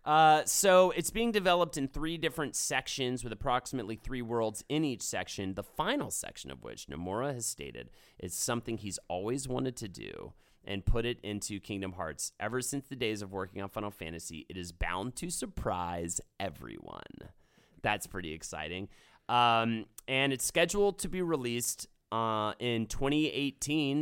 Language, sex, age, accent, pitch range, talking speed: English, male, 30-49, American, 105-140 Hz, 160 wpm